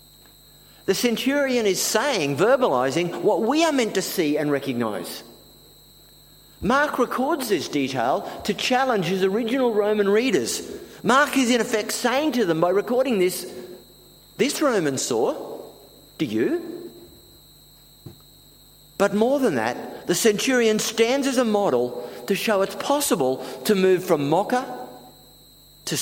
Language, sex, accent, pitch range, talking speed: English, male, Australian, 155-255 Hz, 130 wpm